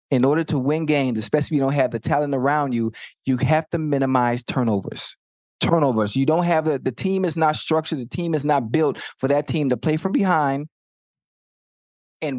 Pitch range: 145-180 Hz